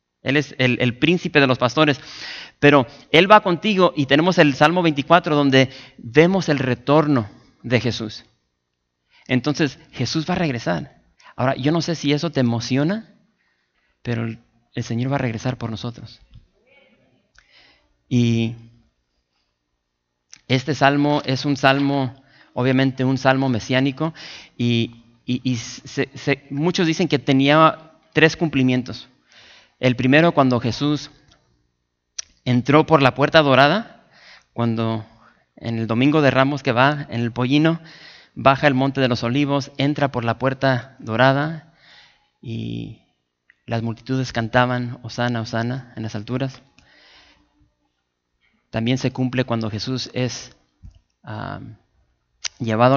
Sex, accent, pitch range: male, Mexican, 115-145 Hz